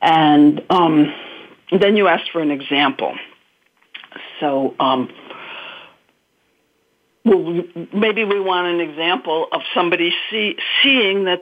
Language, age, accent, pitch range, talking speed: English, 60-79, American, 165-215 Hz, 110 wpm